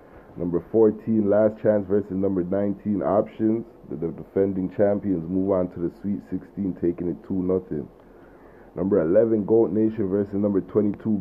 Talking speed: 155 wpm